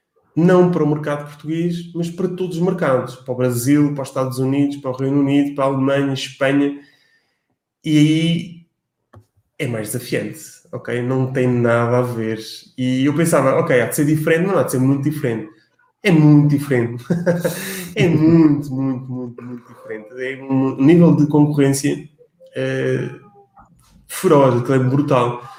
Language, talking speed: Portuguese, 170 wpm